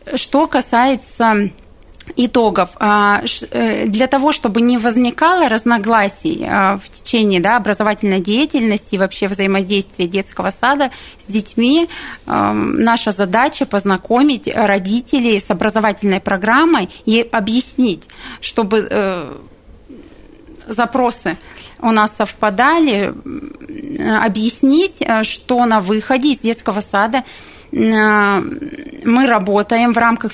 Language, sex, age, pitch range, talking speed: Russian, female, 30-49, 210-250 Hz, 90 wpm